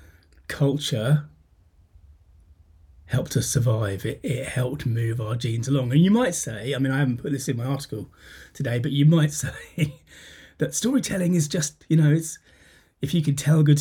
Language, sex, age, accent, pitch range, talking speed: English, male, 30-49, British, 115-150 Hz, 180 wpm